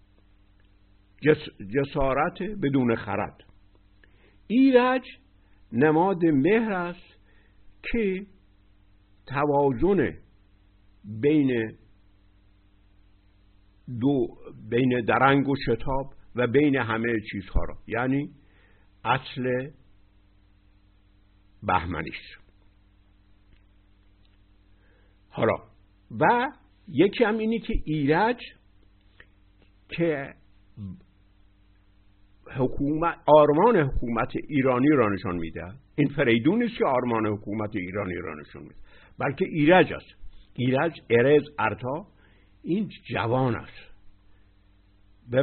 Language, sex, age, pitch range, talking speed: Persian, male, 60-79, 100-140 Hz, 75 wpm